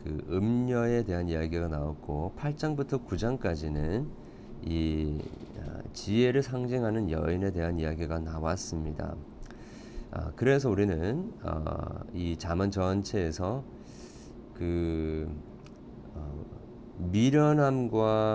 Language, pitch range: Korean, 80-110 Hz